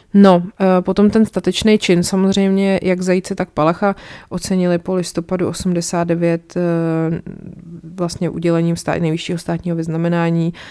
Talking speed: 110 wpm